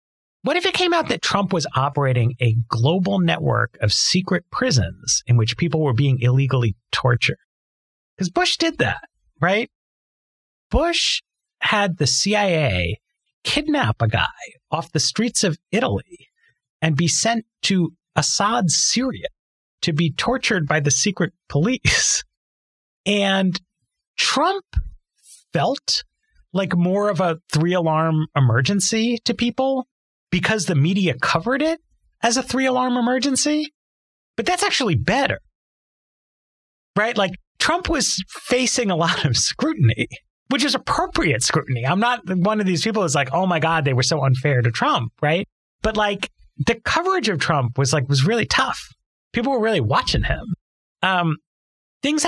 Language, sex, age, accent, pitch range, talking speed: English, male, 40-59, American, 140-230 Hz, 145 wpm